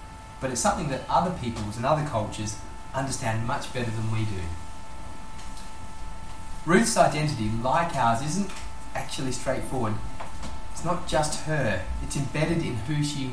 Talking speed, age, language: 140 wpm, 30-49, English